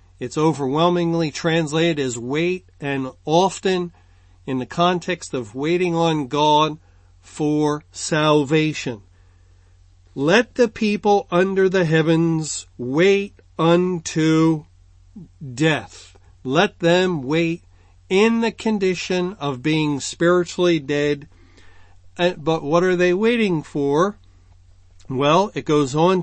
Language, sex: English, male